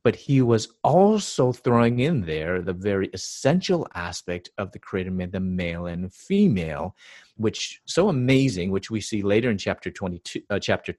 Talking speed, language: 170 wpm, English